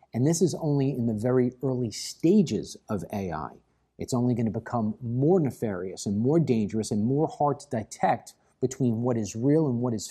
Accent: American